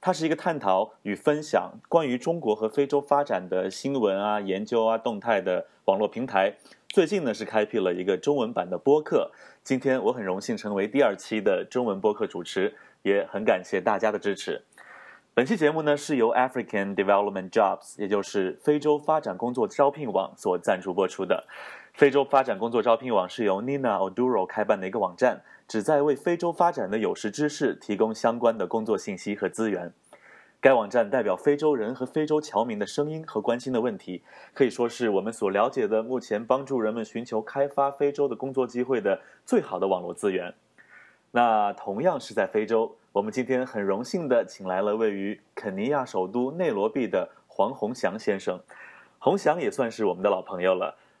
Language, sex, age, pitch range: English, male, 30-49, 105-145 Hz